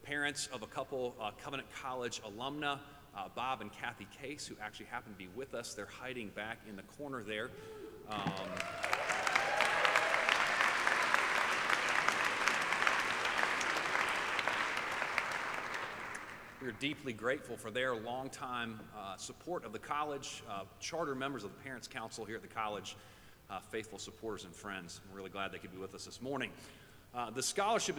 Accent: American